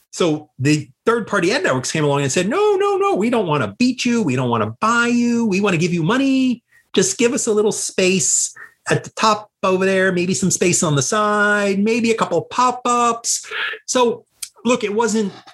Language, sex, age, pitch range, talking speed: English, male, 30-49, 155-230 Hz, 215 wpm